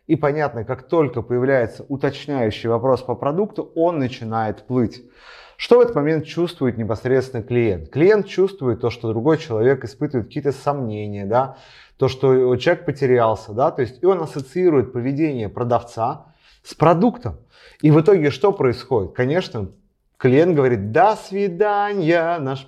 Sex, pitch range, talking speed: male, 120-160 Hz, 145 wpm